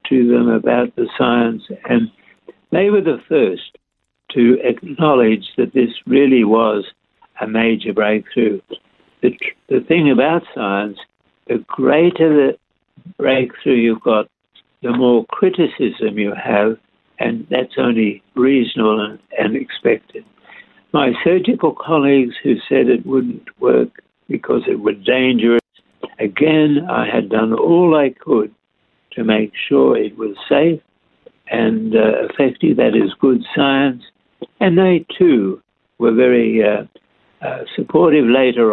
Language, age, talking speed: English, 60-79, 130 wpm